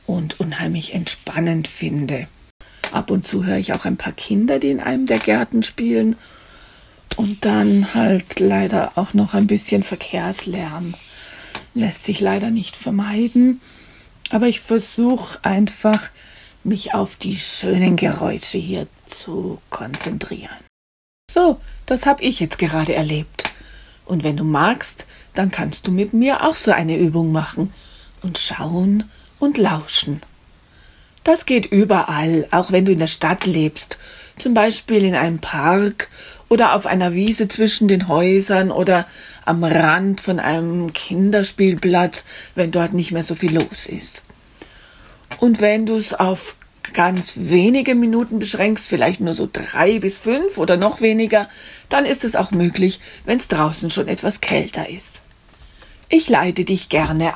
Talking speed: 145 wpm